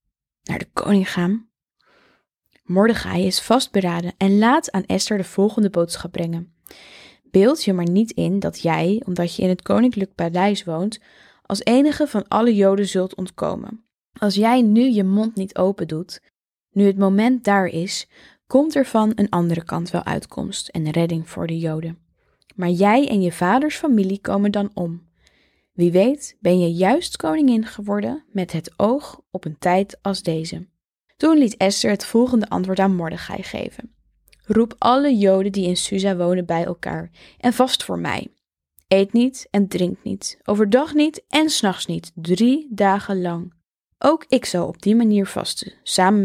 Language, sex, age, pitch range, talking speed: Dutch, female, 10-29, 175-225 Hz, 165 wpm